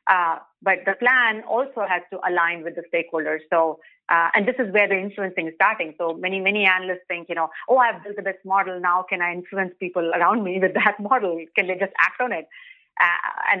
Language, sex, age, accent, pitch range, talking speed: English, female, 30-49, Indian, 170-205 Hz, 230 wpm